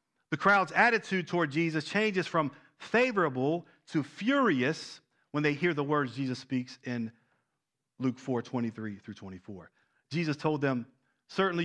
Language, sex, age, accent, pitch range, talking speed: English, male, 40-59, American, 135-180 Hz, 140 wpm